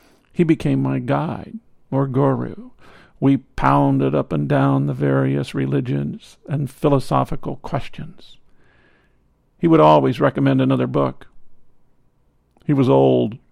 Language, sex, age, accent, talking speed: English, male, 50-69, American, 115 wpm